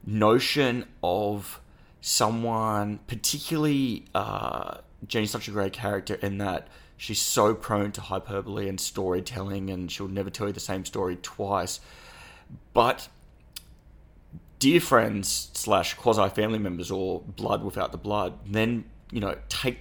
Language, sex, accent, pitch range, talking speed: English, male, Australian, 95-105 Hz, 130 wpm